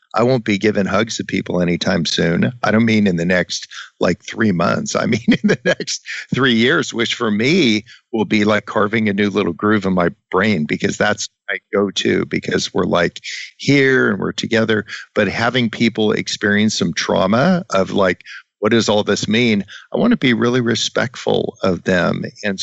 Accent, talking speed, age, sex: American, 190 wpm, 50-69, male